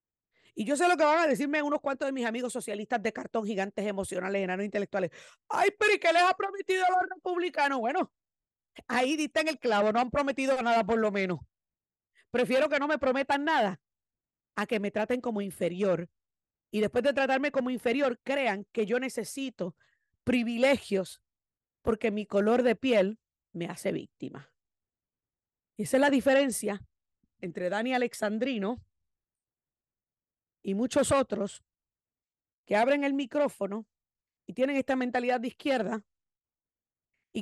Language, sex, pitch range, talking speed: Spanish, female, 205-275 Hz, 155 wpm